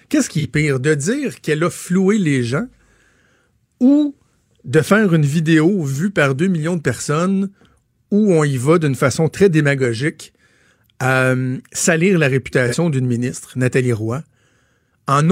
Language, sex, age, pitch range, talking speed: French, male, 50-69, 135-180 Hz, 155 wpm